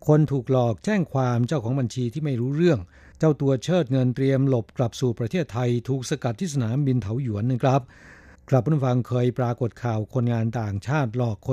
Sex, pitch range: male, 120-140 Hz